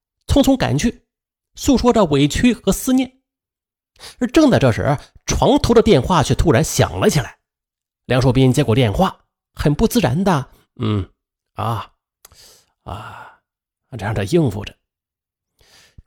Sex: male